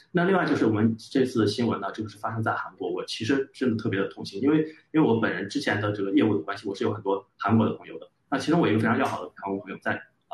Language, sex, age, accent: Chinese, male, 20-39, native